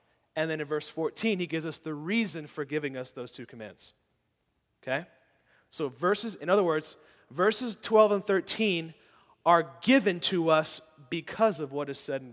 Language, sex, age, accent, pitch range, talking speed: English, male, 30-49, American, 140-200 Hz, 175 wpm